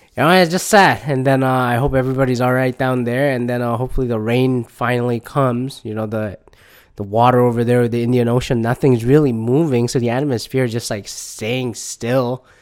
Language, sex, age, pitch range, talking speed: English, male, 20-39, 115-130 Hz, 215 wpm